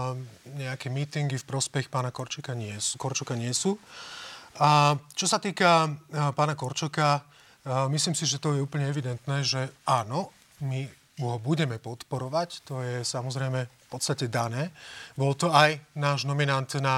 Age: 30-49